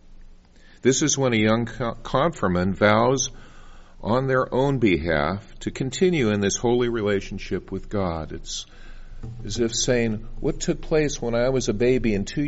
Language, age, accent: English, 50-69, American